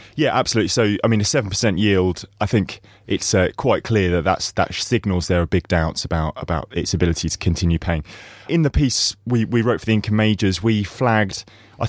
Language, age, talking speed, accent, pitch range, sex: English, 20-39, 205 wpm, British, 90-115 Hz, male